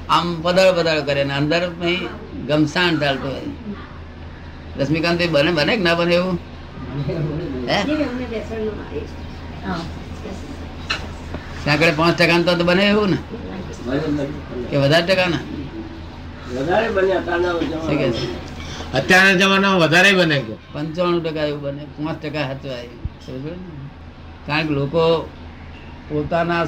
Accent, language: native, Gujarati